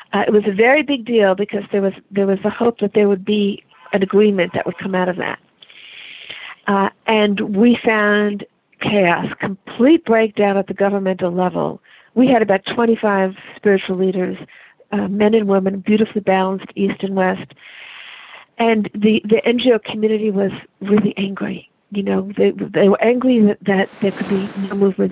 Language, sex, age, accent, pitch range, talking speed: English, female, 50-69, American, 200-235 Hz, 175 wpm